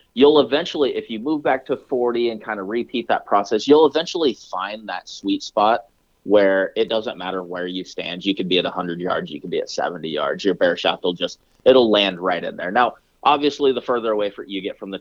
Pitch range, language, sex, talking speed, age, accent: 90-120 Hz, English, male, 235 wpm, 30-49, American